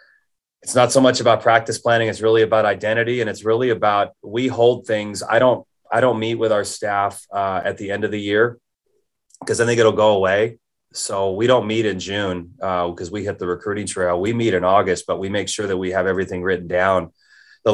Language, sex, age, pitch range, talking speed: English, male, 30-49, 95-115 Hz, 225 wpm